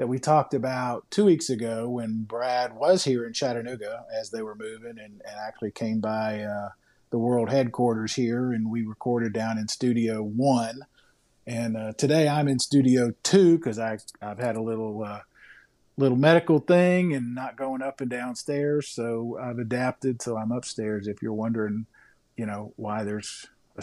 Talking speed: 180 wpm